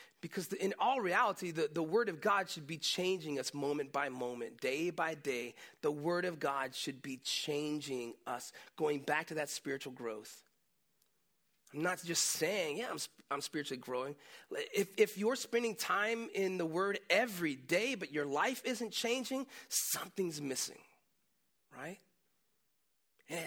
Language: English